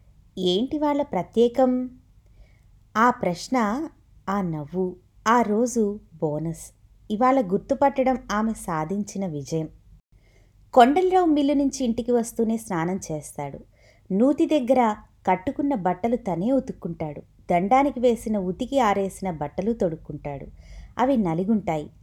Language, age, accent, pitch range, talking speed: Telugu, 20-39, native, 165-245 Hz, 95 wpm